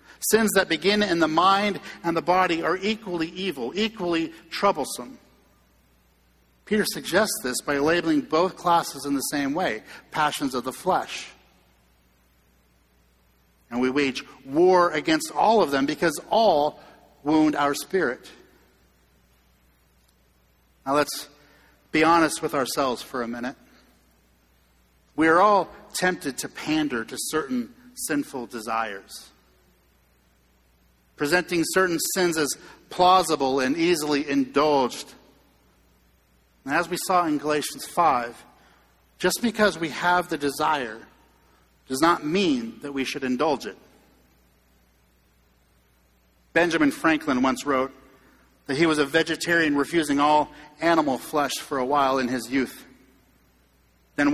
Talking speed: 120 wpm